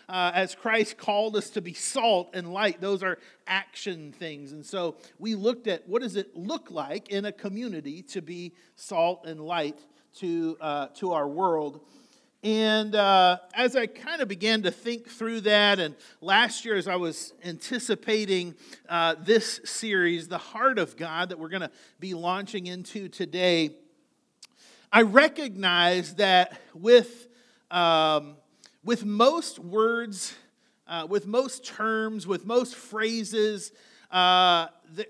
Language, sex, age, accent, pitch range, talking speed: English, male, 40-59, American, 180-235 Hz, 150 wpm